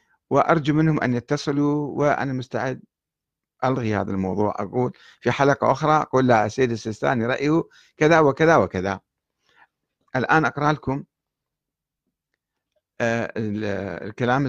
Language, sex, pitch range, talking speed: Arabic, male, 115-155 Hz, 105 wpm